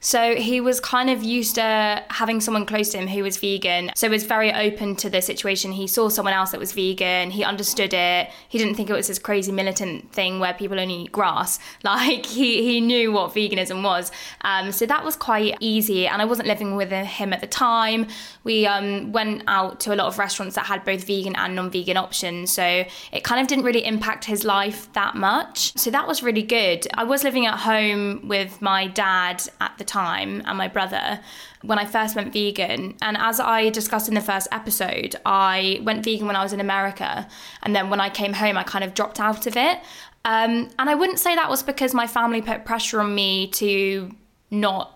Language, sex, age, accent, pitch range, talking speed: English, female, 10-29, British, 195-225 Hz, 220 wpm